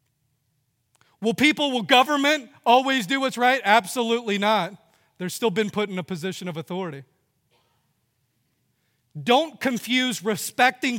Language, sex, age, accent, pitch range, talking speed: English, male, 40-59, American, 170-230 Hz, 125 wpm